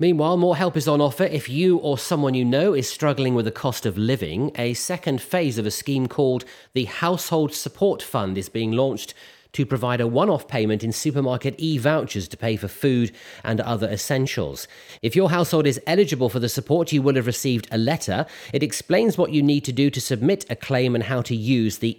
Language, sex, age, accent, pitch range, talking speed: English, male, 30-49, British, 115-150 Hz, 215 wpm